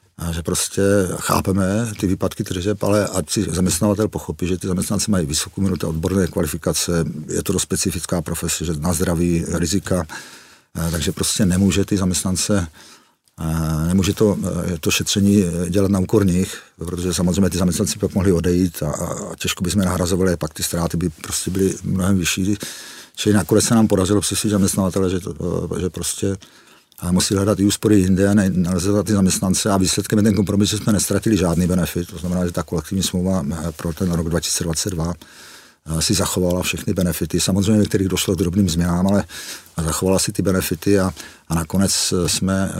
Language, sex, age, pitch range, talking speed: Czech, male, 40-59, 85-100 Hz, 170 wpm